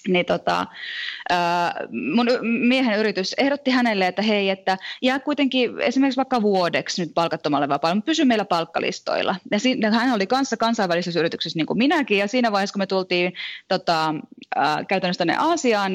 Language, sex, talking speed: Finnish, female, 160 wpm